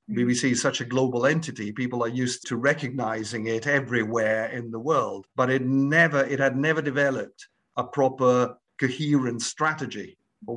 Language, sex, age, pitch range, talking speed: Italian, male, 50-69, 110-130 Hz, 160 wpm